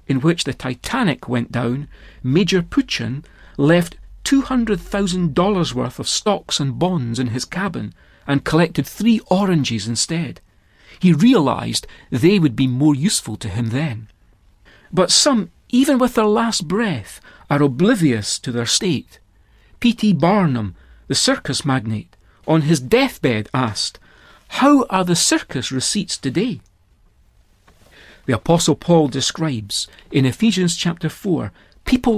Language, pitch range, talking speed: English, 125-185 Hz, 130 wpm